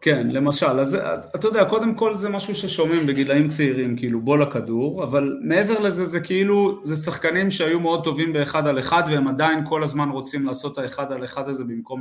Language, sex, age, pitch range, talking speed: Hebrew, male, 30-49, 125-160 Hz, 205 wpm